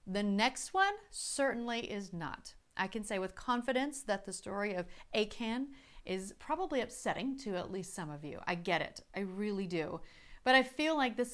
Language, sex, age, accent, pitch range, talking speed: English, female, 40-59, American, 195-250 Hz, 190 wpm